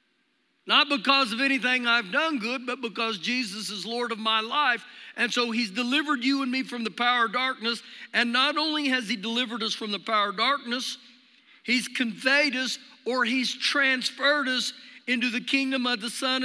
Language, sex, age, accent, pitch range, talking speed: English, male, 50-69, American, 240-285 Hz, 190 wpm